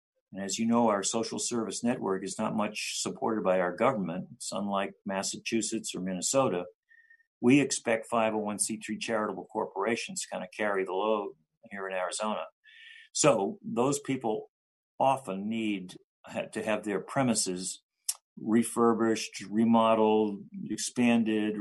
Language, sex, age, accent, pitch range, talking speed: English, male, 50-69, American, 100-155 Hz, 125 wpm